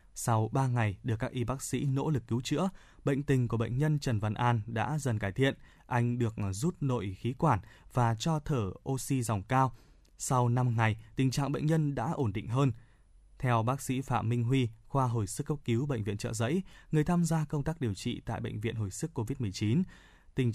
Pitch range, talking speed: 110-135 Hz, 220 wpm